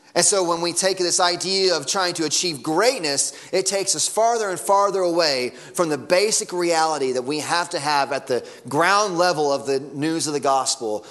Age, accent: 30-49, American